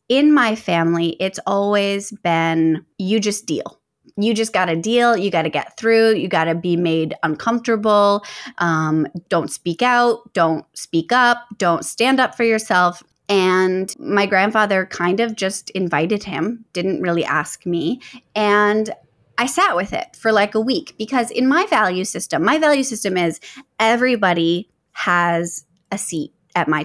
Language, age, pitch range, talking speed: English, 20-39, 175-235 Hz, 165 wpm